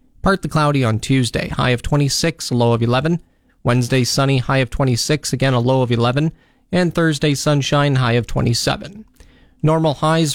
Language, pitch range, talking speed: English, 125-155 Hz, 175 wpm